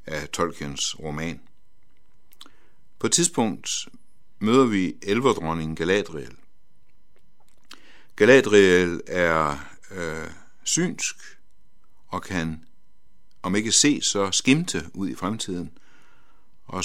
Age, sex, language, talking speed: 60-79, male, Danish, 85 wpm